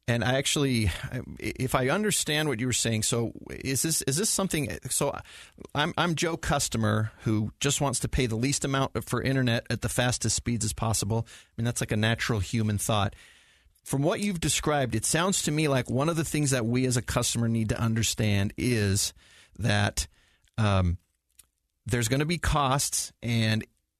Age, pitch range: 30-49, 105-135 Hz